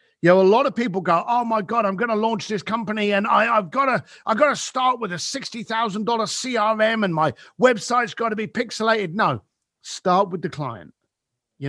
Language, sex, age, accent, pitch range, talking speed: English, male, 50-69, British, 170-240 Hz, 200 wpm